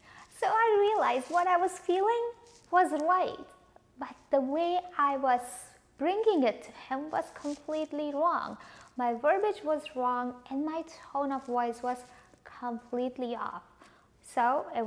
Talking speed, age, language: 140 wpm, 20-39, English